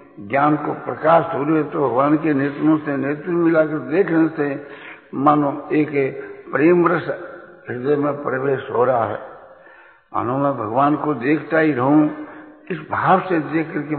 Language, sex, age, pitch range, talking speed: Hindi, male, 60-79, 140-160 Hz, 155 wpm